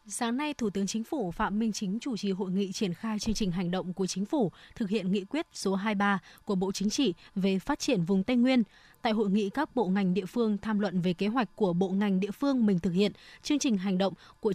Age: 20-39